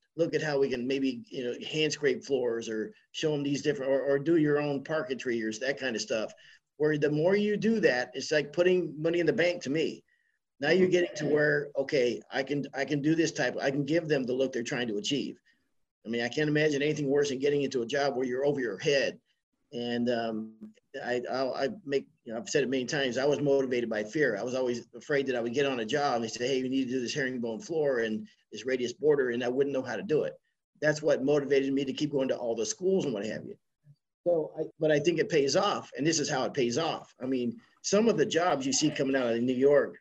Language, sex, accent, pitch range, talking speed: English, male, American, 125-155 Hz, 260 wpm